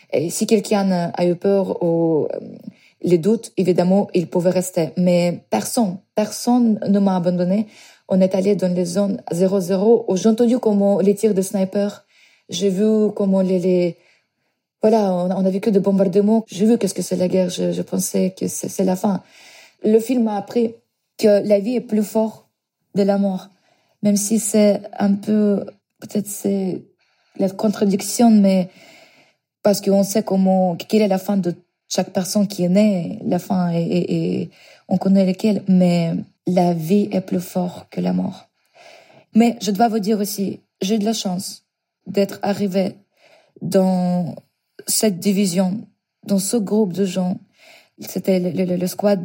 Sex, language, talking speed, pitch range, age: female, French, 170 wpm, 185-210 Hz, 30-49